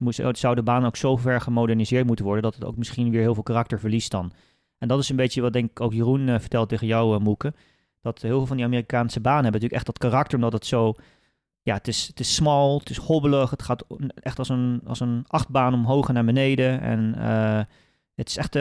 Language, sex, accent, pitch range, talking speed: Dutch, male, Dutch, 120-140 Hz, 250 wpm